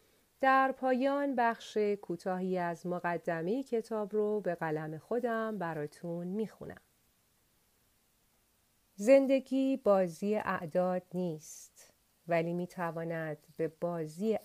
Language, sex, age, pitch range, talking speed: Persian, female, 40-59, 160-200 Hz, 85 wpm